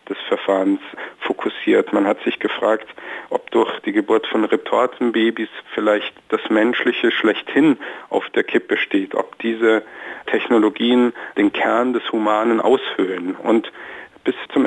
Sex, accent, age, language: male, German, 50-69, German